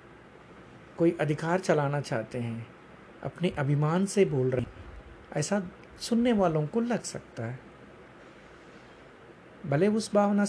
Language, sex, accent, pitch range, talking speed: Hindi, male, native, 145-185 Hz, 120 wpm